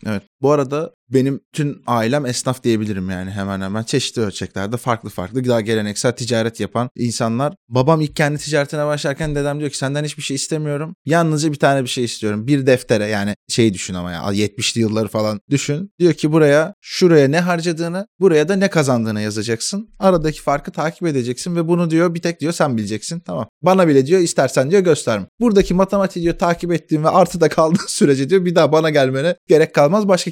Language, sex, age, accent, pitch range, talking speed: Turkish, male, 20-39, native, 115-160 Hz, 190 wpm